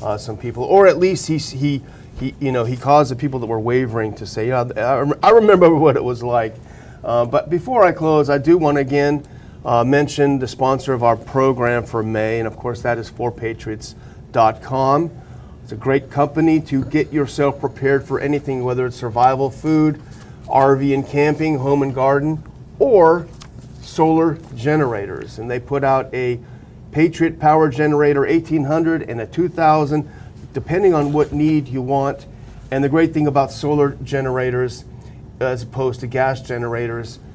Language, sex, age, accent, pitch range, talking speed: English, male, 40-59, American, 120-145 Hz, 170 wpm